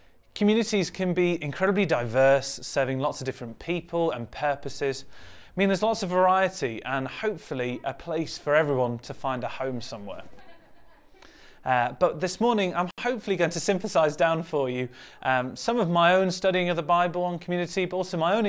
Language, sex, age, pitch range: English, male, 30-49, 130-185 Hz